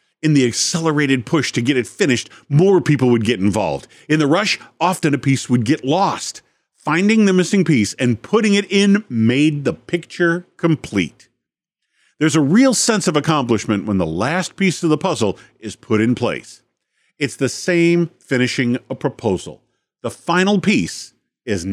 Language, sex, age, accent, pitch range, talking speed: English, male, 50-69, American, 115-175 Hz, 170 wpm